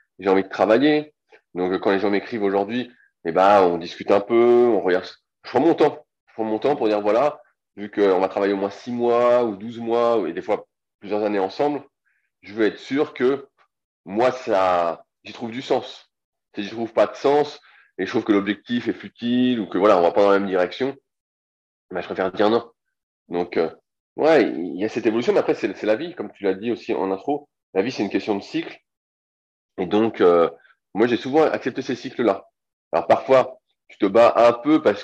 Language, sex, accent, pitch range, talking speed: French, male, French, 100-140 Hz, 225 wpm